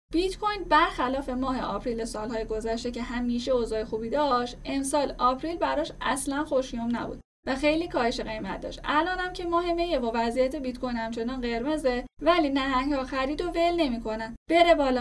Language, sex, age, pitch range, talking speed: Persian, female, 10-29, 240-310 Hz, 165 wpm